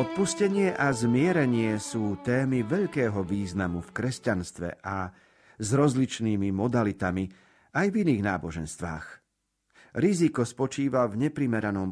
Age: 50-69